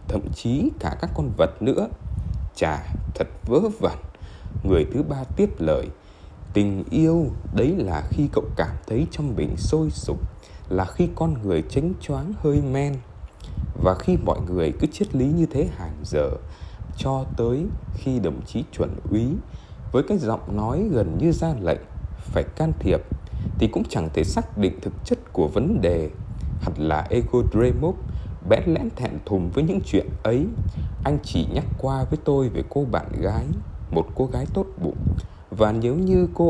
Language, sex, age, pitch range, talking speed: Vietnamese, male, 20-39, 90-140 Hz, 175 wpm